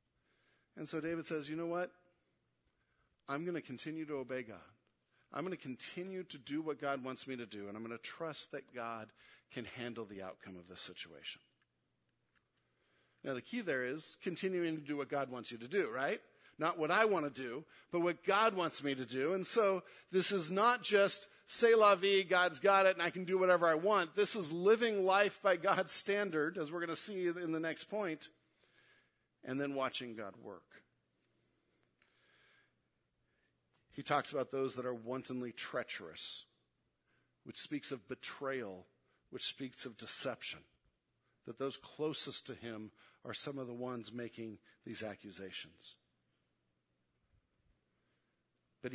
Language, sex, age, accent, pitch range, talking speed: English, male, 50-69, American, 115-175 Hz, 170 wpm